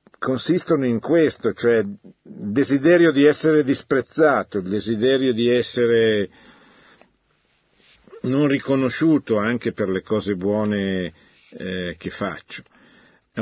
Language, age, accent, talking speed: Italian, 50-69, native, 105 wpm